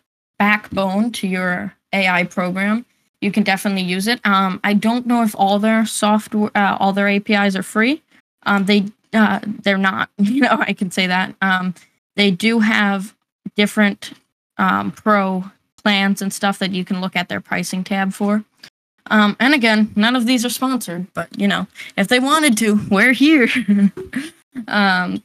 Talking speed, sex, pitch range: 170 wpm, female, 190-220 Hz